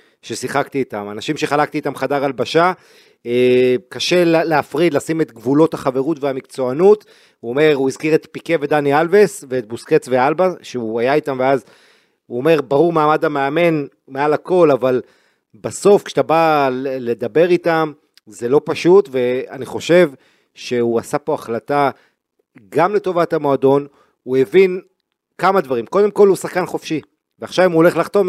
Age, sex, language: 40-59, male, Hebrew